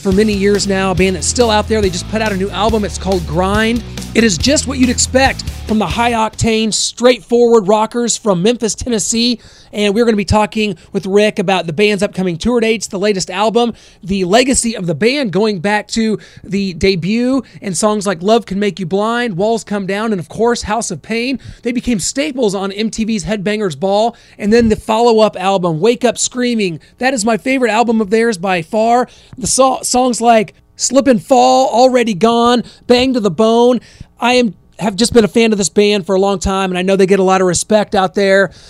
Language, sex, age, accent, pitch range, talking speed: English, male, 30-49, American, 190-230 Hz, 220 wpm